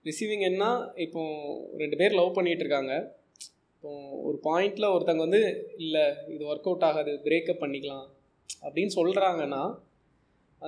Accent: native